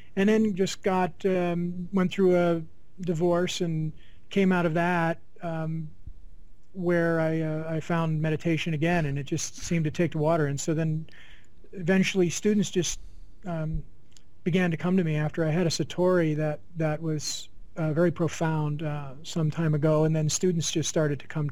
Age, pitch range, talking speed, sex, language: 40-59, 150-175 Hz, 180 wpm, male, English